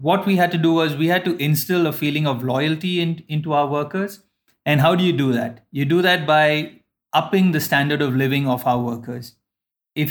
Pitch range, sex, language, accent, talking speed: 140-175 Hz, male, English, Indian, 220 wpm